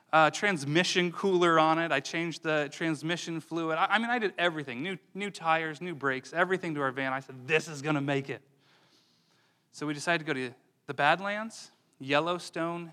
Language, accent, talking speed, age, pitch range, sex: English, American, 195 wpm, 30-49, 135-180 Hz, male